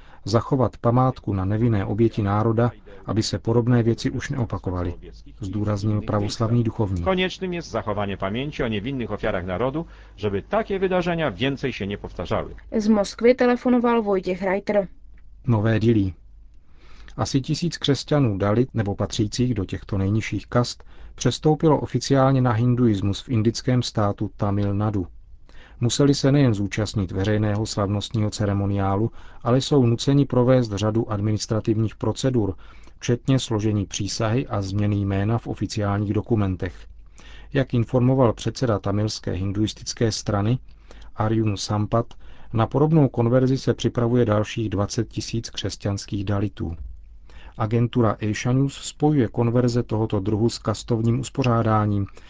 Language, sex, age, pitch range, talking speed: Czech, male, 40-59, 100-125 Hz, 120 wpm